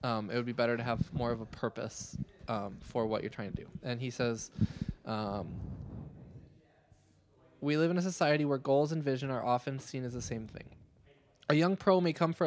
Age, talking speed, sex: 20-39, 210 wpm, male